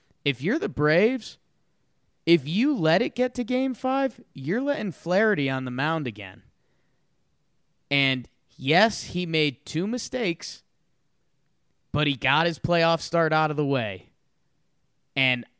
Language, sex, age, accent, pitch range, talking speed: English, male, 20-39, American, 135-175 Hz, 140 wpm